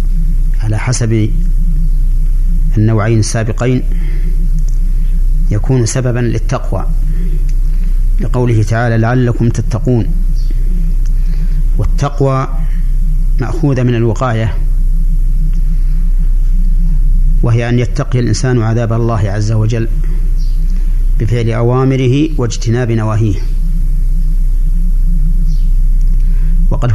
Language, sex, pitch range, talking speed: Arabic, male, 115-150 Hz, 60 wpm